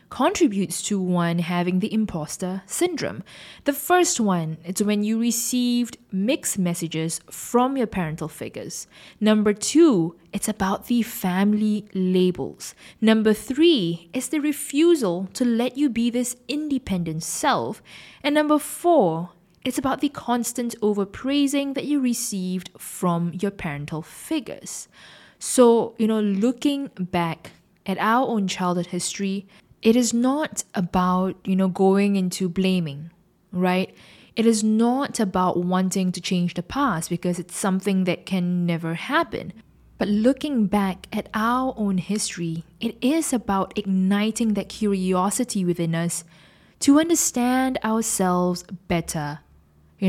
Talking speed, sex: 130 wpm, female